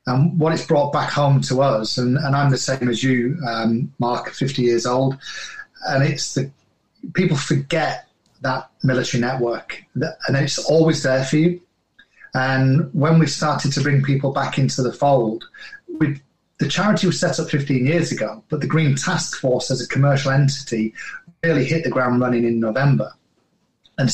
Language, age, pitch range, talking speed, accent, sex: English, 30-49, 125-155 Hz, 175 wpm, British, male